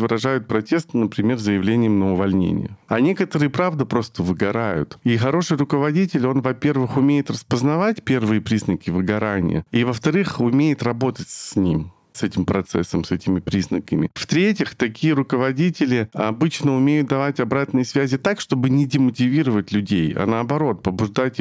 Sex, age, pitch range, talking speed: male, 40-59, 105-145 Hz, 135 wpm